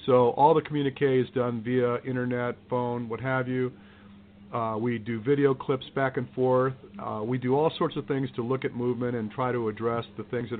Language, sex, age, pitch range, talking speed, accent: English, male, 50-69, 115-145 Hz, 215 wpm, American